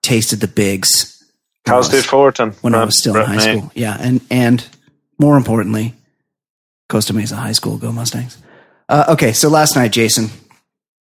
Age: 30-49